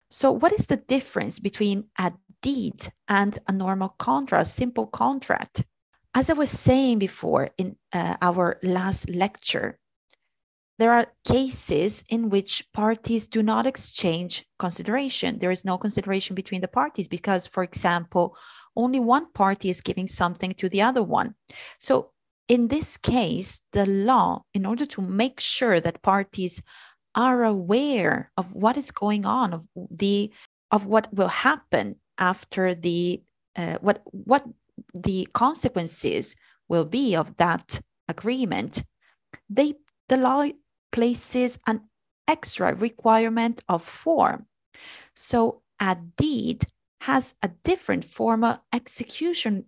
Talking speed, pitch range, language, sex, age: 135 wpm, 185-250 Hz, Italian, female, 30-49